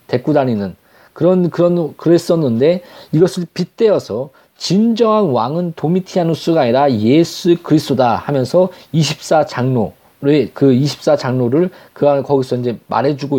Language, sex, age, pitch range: Korean, male, 40-59, 150-205 Hz